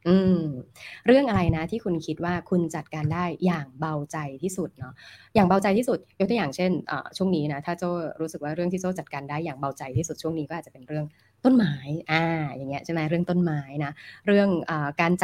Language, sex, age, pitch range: Thai, female, 20-39, 150-185 Hz